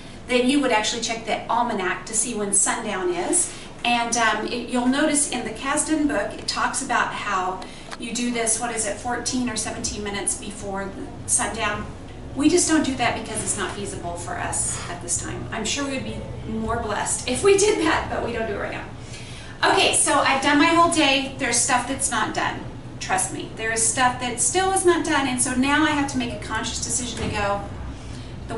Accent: American